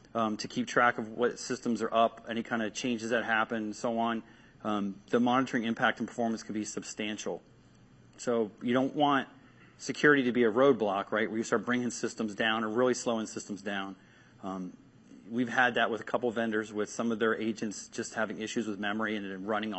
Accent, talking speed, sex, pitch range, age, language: American, 205 wpm, male, 110-145 Hz, 30-49, English